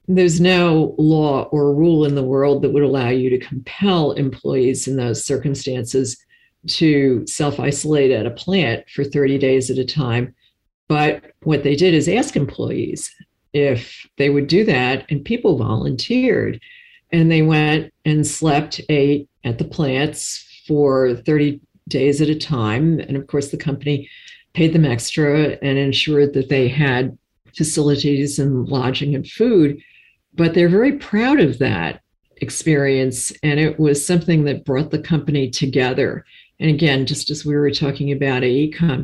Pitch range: 135-155 Hz